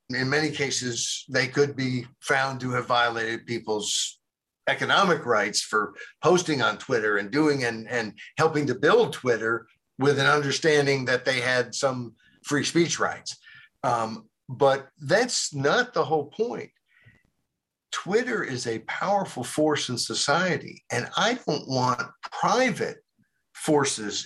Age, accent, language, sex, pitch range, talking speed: 50-69, American, English, male, 125-180 Hz, 135 wpm